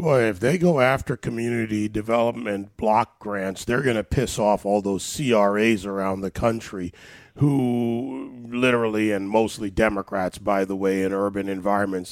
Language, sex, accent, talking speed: English, male, American, 155 wpm